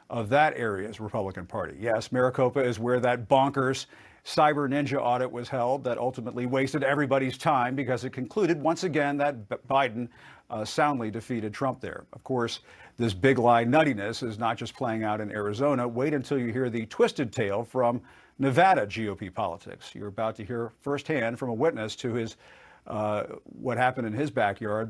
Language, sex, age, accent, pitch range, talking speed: English, male, 50-69, American, 115-145 Hz, 180 wpm